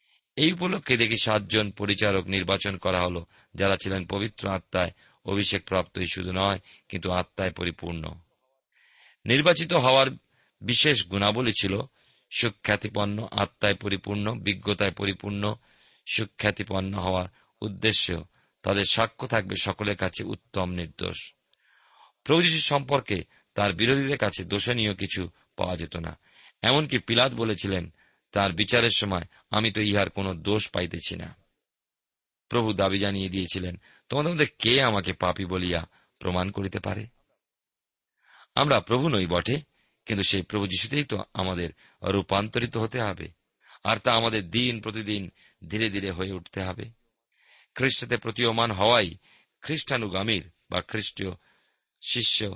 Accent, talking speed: native, 95 wpm